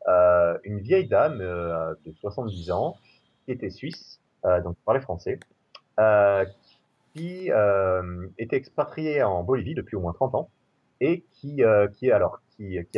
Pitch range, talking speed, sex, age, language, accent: 90-120 Hz, 165 wpm, male, 30-49, French, French